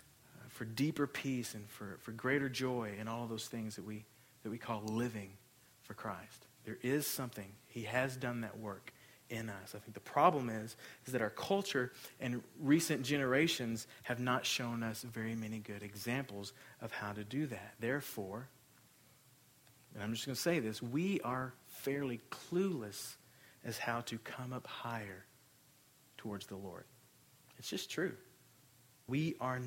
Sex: male